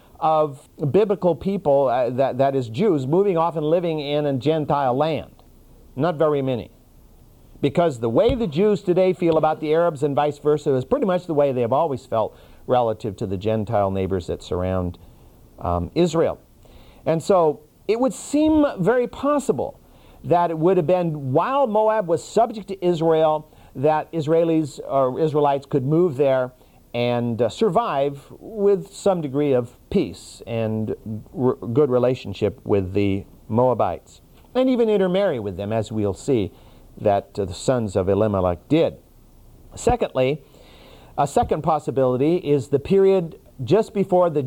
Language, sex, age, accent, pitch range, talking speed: English, male, 50-69, American, 120-175 Hz, 155 wpm